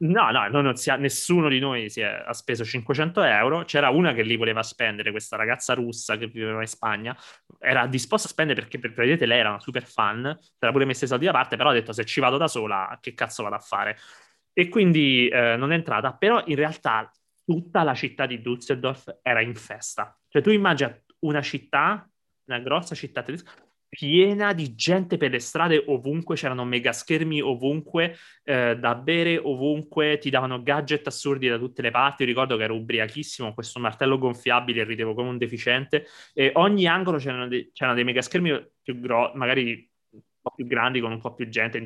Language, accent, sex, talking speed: Italian, native, male, 200 wpm